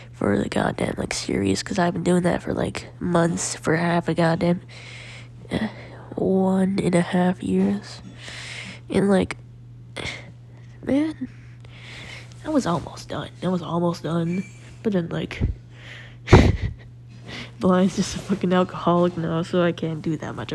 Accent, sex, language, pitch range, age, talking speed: American, female, English, 120-180 Hz, 10-29, 145 wpm